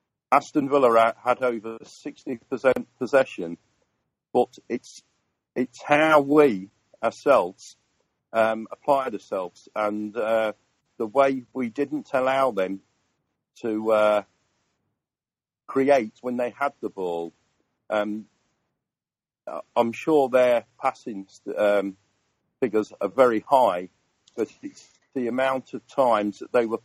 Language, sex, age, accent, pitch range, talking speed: English, male, 40-59, British, 105-130 Hz, 110 wpm